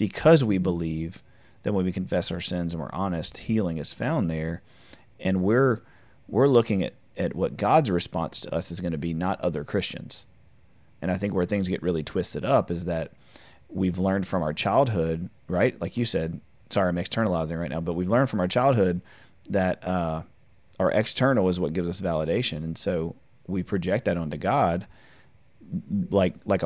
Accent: American